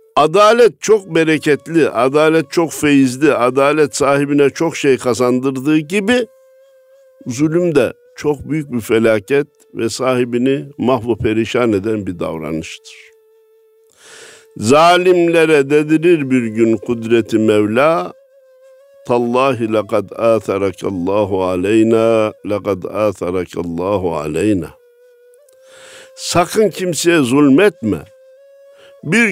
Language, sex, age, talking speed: Turkish, male, 60-79, 85 wpm